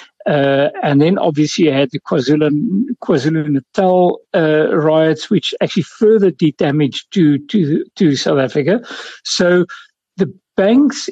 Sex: male